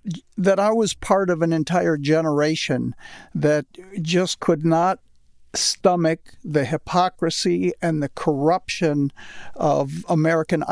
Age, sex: 60-79, male